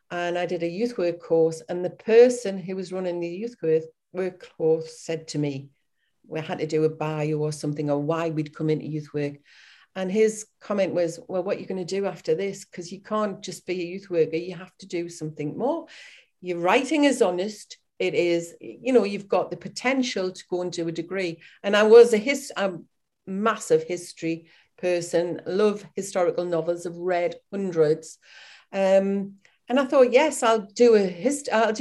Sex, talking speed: female, 200 wpm